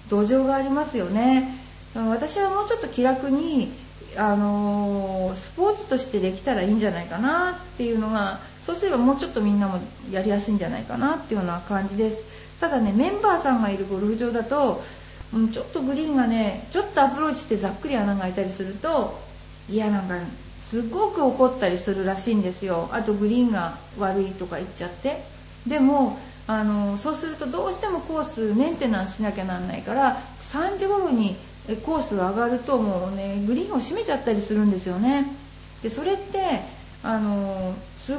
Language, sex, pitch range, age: Japanese, female, 205-285 Hz, 40-59